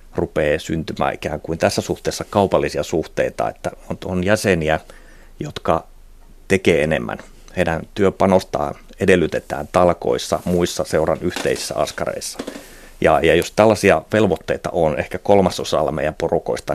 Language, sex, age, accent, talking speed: Finnish, male, 30-49, native, 120 wpm